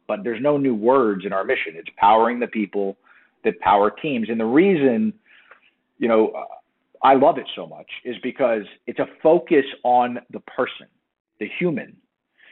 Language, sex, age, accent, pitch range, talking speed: English, male, 40-59, American, 110-165 Hz, 175 wpm